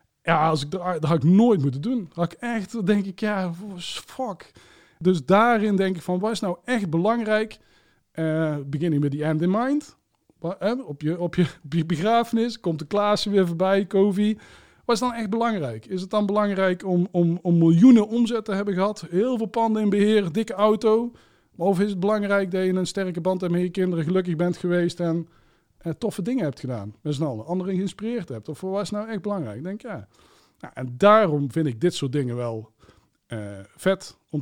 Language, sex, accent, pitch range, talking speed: Dutch, male, Dutch, 145-195 Hz, 205 wpm